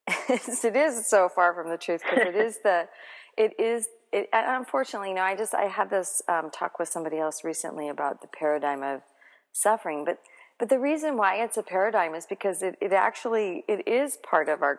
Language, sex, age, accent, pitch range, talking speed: English, female, 40-59, American, 155-205 Hz, 205 wpm